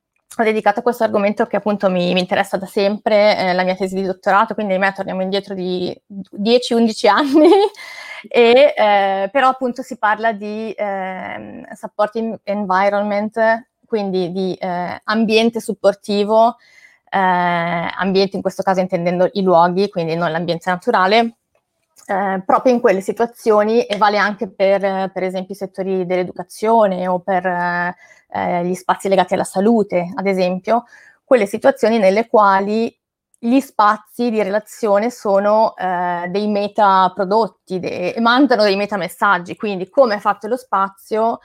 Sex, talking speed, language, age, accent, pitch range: female, 140 wpm, Italian, 20-39, native, 190-225 Hz